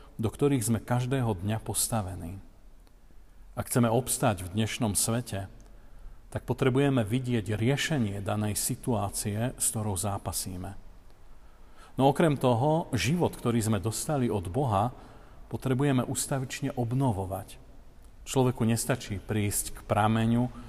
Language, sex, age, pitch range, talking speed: Slovak, male, 40-59, 105-125 Hz, 110 wpm